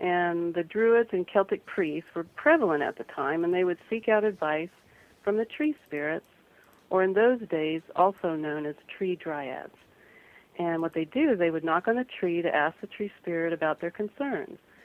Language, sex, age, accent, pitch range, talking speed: English, female, 50-69, American, 165-205 Hz, 200 wpm